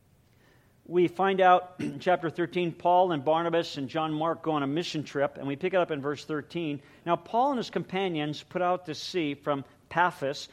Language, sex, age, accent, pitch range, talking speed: English, male, 50-69, American, 135-180 Hz, 205 wpm